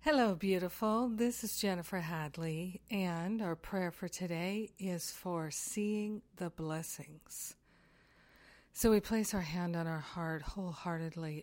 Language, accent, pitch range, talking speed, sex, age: English, American, 165-190 Hz, 130 wpm, female, 50-69